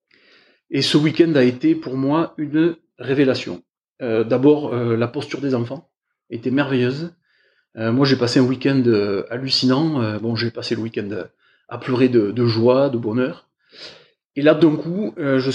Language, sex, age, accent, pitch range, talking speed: French, male, 30-49, French, 125-155 Hz, 170 wpm